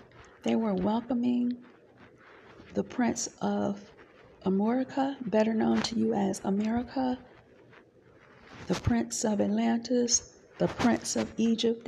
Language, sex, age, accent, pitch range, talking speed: English, female, 40-59, American, 200-240 Hz, 105 wpm